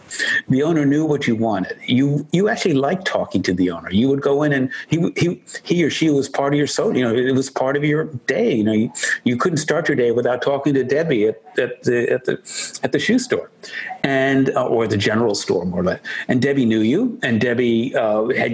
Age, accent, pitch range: 50-69, American, 105-150 Hz